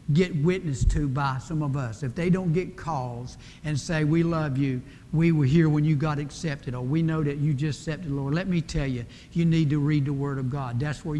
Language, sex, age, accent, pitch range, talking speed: English, male, 60-79, American, 140-170 Hz, 250 wpm